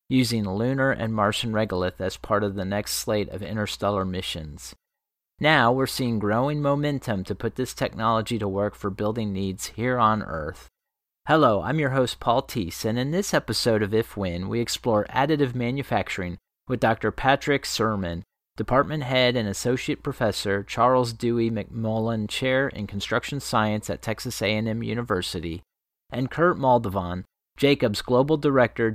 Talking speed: 150 wpm